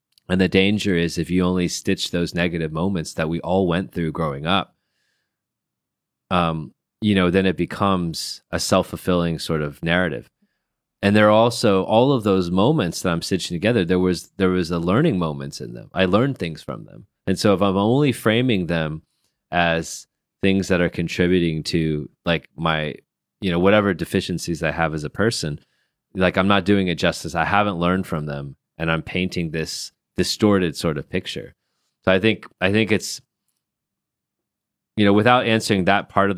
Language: Chinese